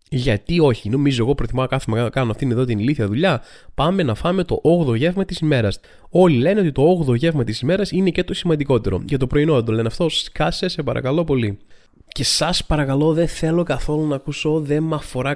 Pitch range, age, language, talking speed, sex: 120-150 Hz, 20-39, Greek, 210 wpm, male